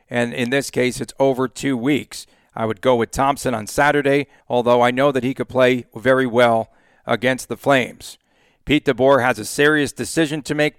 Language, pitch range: English, 125-150 Hz